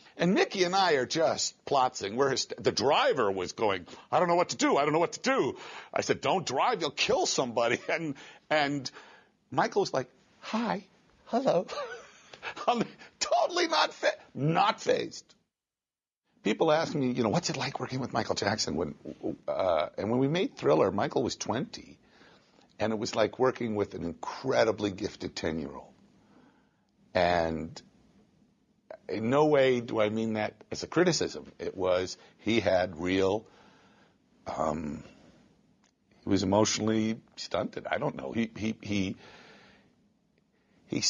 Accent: American